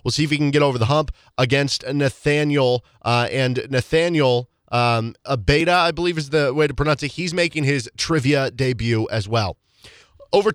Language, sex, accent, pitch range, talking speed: English, male, American, 130-165 Hz, 180 wpm